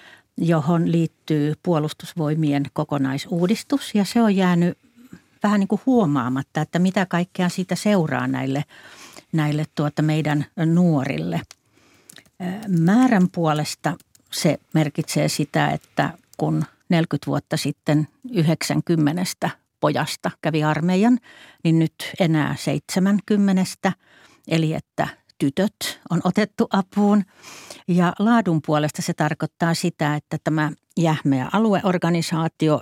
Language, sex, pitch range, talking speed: Finnish, female, 150-200 Hz, 105 wpm